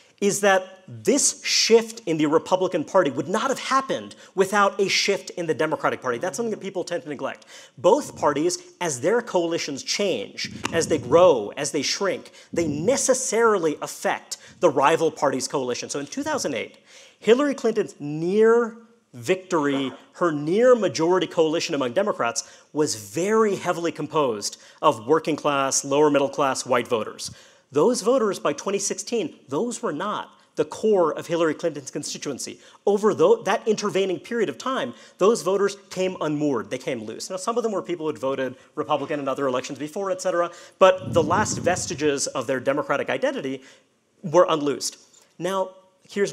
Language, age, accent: English, 40-59, American